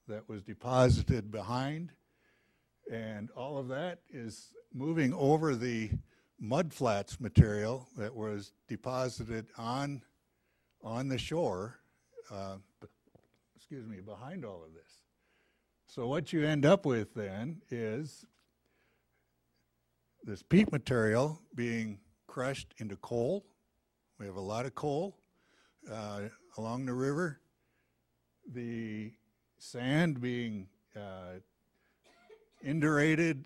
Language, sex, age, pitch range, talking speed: English, male, 60-79, 105-140 Hz, 105 wpm